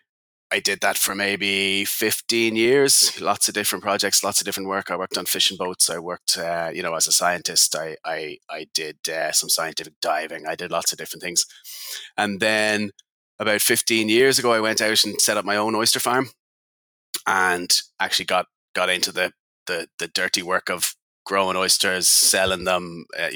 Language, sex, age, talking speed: English, male, 30-49, 190 wpm